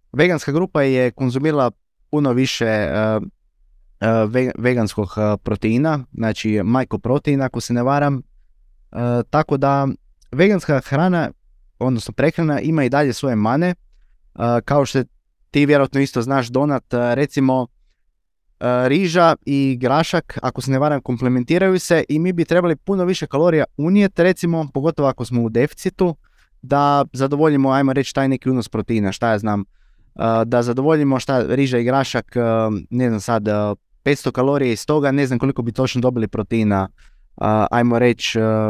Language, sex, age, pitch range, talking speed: Croatian, male, 20-39, 115-145 Hz, 140 wpm